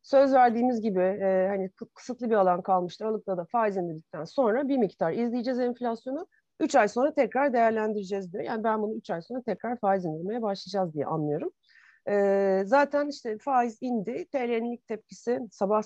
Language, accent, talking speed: Turkish, native, 170 wpm